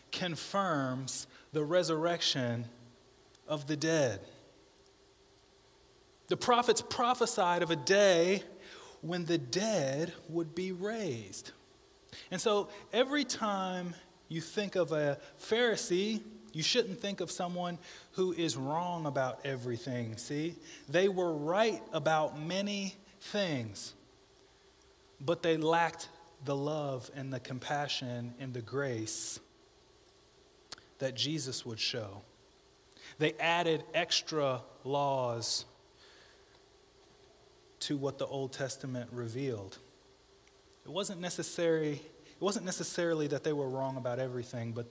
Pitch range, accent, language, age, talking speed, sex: 135-195 Hz, American, English, 30-49, 110 wpm, male